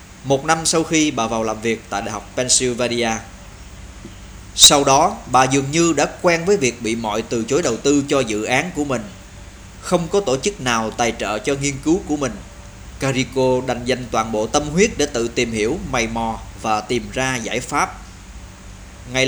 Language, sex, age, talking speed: Vietnamese, male, 20-39, 195 wpm